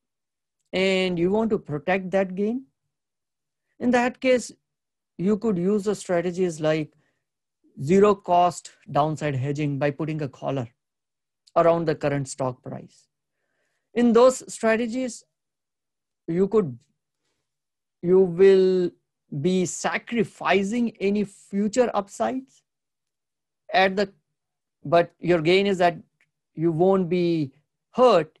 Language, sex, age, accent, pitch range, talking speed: English, male, 50-69, Indian, 145-190 Hz, 110 wpm